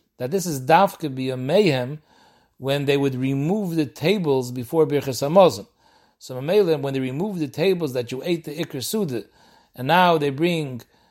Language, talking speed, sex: English, 180 wpm, male